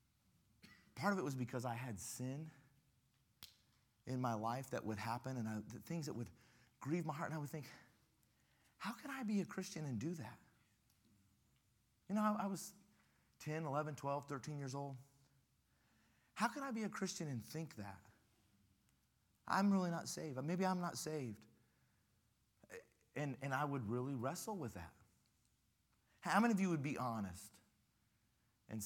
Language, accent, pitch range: English, American, 110-155 Hz